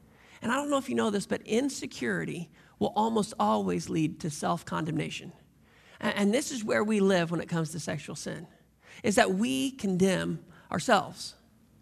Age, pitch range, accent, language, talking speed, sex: 40-59, 210-275 Hz, American, English, 170 wpm, male